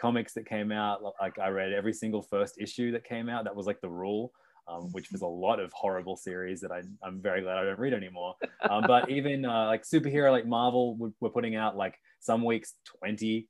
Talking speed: 230 wpm